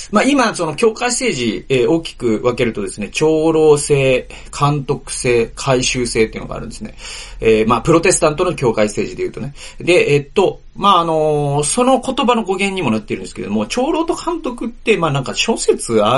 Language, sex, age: Japanese, male, 40-59